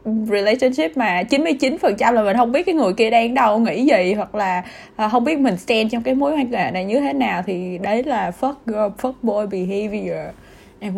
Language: Vietnamese